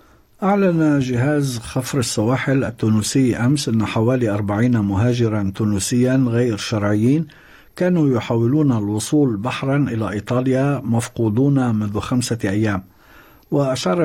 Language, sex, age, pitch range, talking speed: Arabic, male, 60-79, 110-135 Hz, 100 wpm